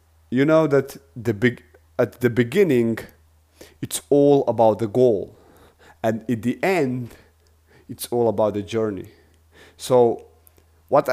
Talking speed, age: 130 wpm, 30-49